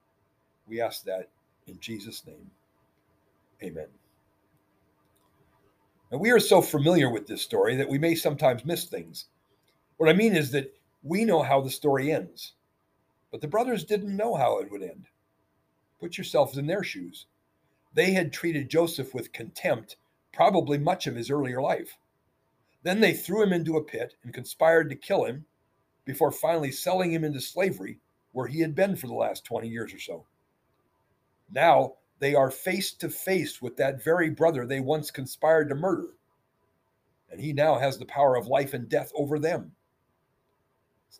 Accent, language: American, English